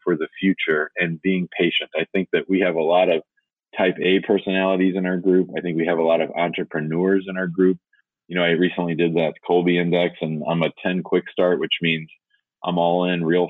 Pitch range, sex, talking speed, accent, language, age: 85-95 Hz, male, 220 wpm, American, English, 30-49